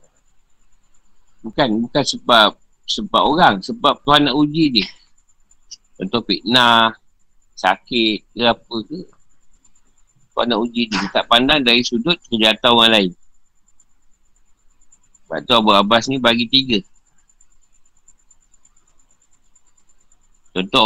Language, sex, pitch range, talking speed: Malay, male, 95-125 Hz, 100 wpm